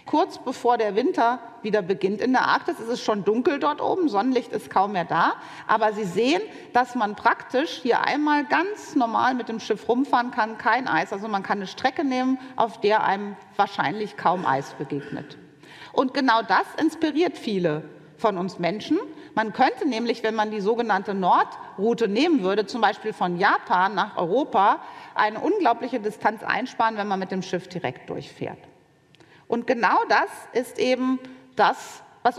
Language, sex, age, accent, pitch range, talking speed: German, female, 40-59, German, 210-255 Hz, 170 wpm